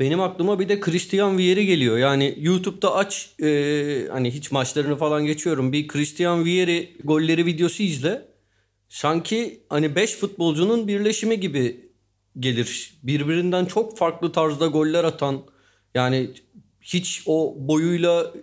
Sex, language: male, Turkish